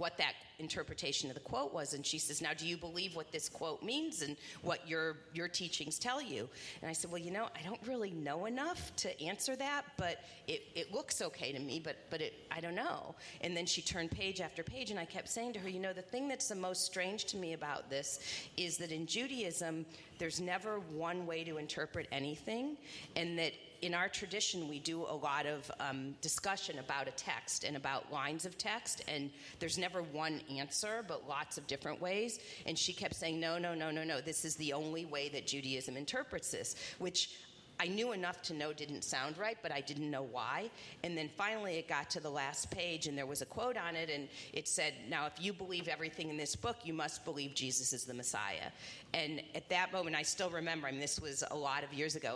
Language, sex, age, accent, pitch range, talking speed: English, female, 40-59, American, 150-185 Hz, 230 wpm